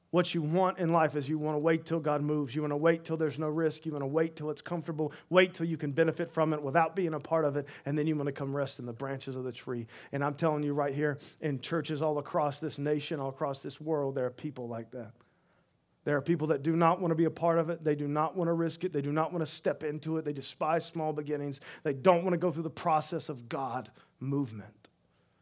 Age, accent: 40-59, American